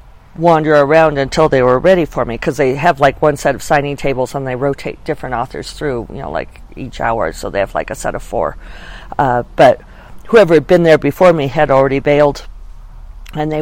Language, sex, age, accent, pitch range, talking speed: English, female, 50-69, American, 130-170 Hz, 215 wpm